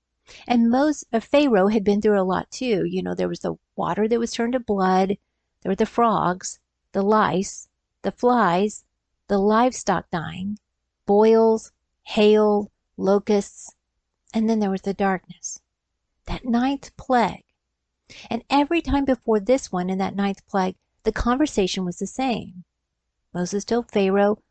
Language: English